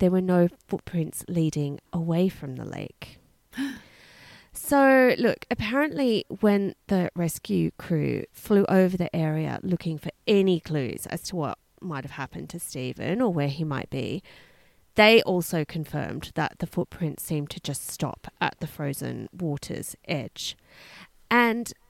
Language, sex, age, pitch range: English, female, 30-49, 160-235 Hz